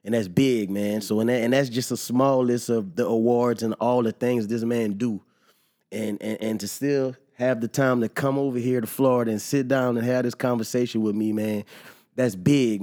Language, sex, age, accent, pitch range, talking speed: English, male, 20-39, American, 110-130 Hz, 230 wpm